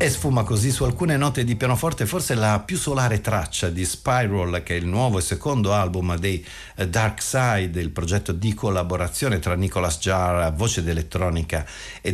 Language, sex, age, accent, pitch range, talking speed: Italian, male, 50-69, native, 85-110 Hz, 175 wpm